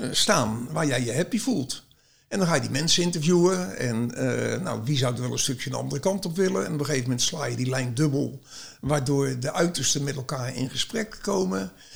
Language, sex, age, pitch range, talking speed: Dutch, male, 60-79, 130-170 Hz, 220 wpm